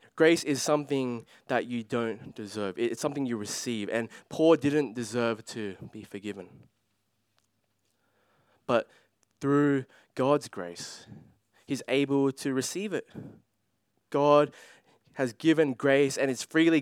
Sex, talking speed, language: male, 120 wpm, English